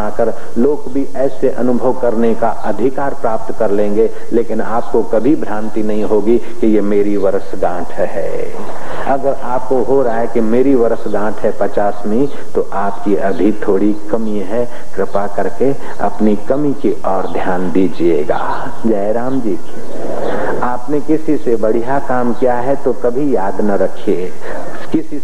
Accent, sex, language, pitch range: native, male, Hindi, 105-125 Hz